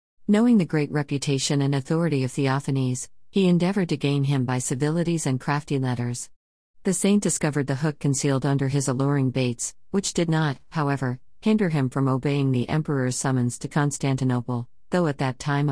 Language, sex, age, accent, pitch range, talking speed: Malayalam, female, 50-69, American, 135-165 Hz, 170 wpm